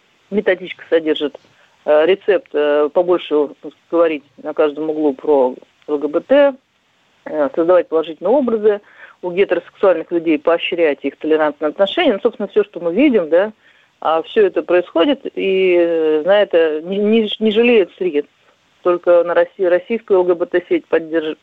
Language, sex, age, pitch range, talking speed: Russian, female, 40-59, 155-210 Hz, 135 wpm